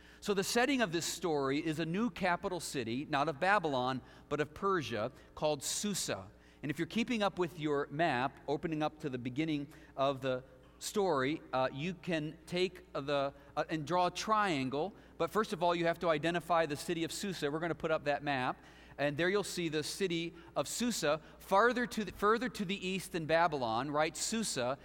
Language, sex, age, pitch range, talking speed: English, male, 40-59, 135-180 Hz, 200 wpm